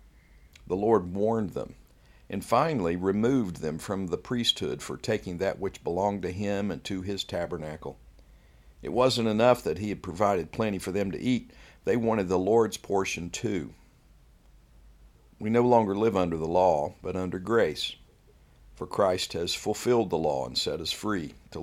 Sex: male